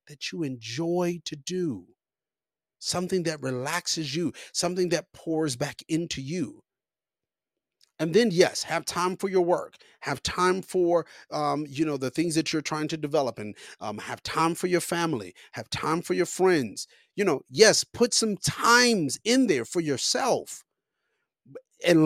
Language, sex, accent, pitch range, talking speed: English, male, American, 150-190 Hz, 160 wpm